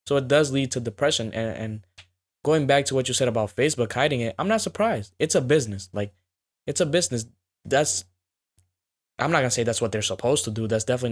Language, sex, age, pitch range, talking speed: English, male, 20-39, 105-130 Hz, 225 wpm